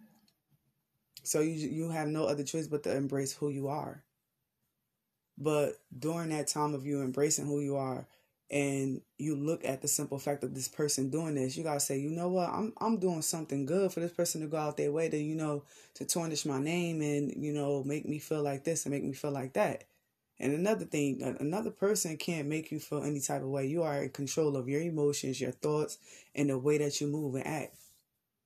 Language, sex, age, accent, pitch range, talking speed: English, female, 20-39, American, 140-155 Hz, 225 wpm